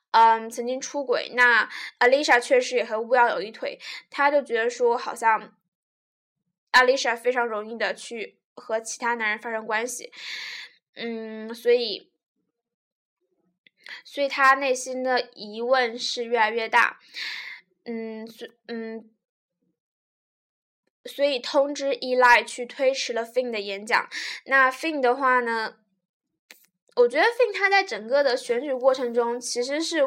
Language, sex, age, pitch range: Chinese, female, 10-29, 230-285 Hz